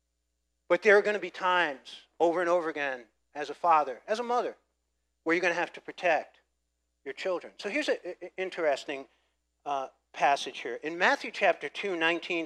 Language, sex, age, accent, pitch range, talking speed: English, male, 50-69, American, 140-185 Hz, 185 wpm